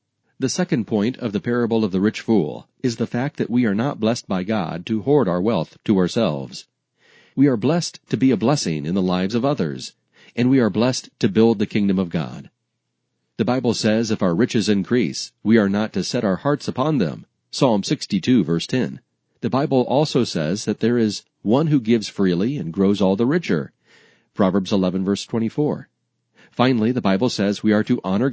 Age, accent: 40-59, American